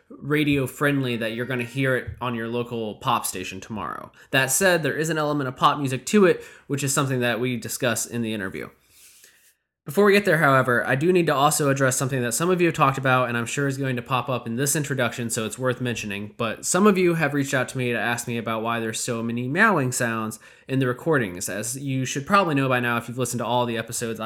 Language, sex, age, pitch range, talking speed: English, male, 20-39, 120-140 Hz, 255 wpm